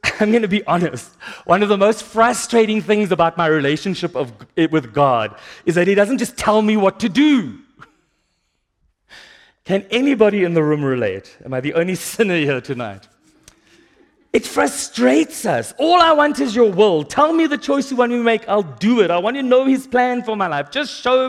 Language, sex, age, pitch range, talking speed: English, male, 40-59, 145-210 Hz, 200 wpm